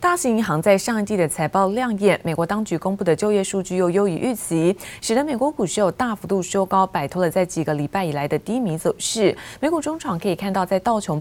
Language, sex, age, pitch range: Chinese, female, 30-49, 165-215 Hz